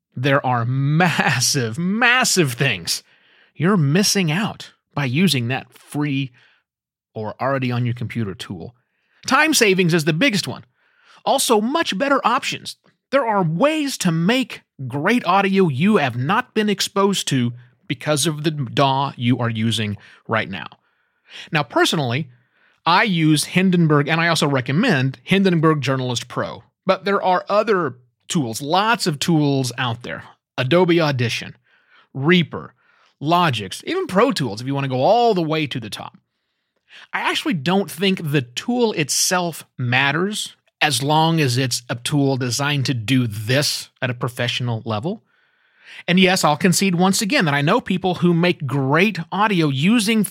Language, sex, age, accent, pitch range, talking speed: English, male, 30-49, American, 135-190 Hz, 150 wpm